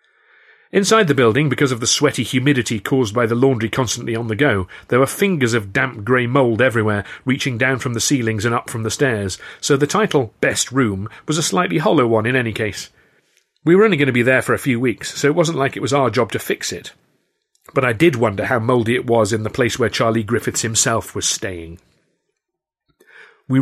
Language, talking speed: English, 220 wpm